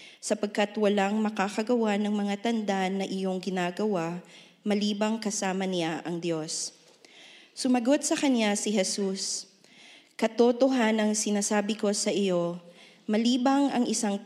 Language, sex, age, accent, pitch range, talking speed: English, female, 20-39, Filipino, 180-215 Hz, 120 wpm